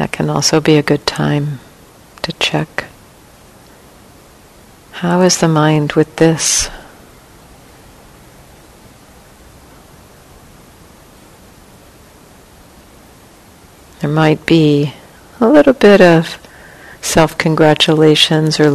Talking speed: 75 wpm